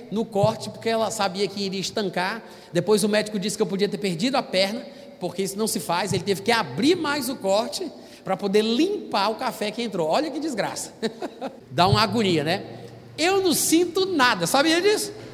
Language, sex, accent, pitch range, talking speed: Portuguese, male, Brazilian, 190-275 Hz, 200 wpm